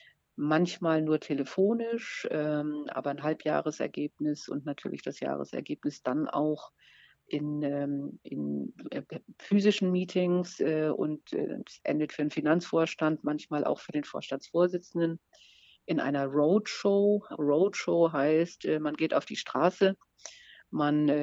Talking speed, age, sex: 125 wpm, 50-69, female